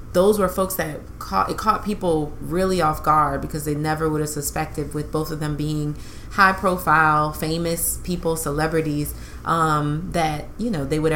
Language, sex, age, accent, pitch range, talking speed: English, female, 30-49, American, 150-170 Hz, 180 wpm